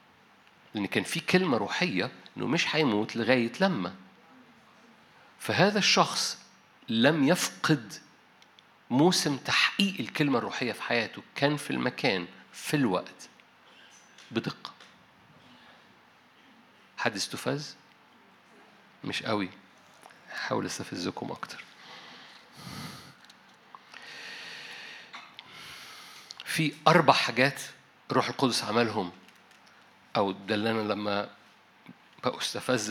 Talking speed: 80 wpm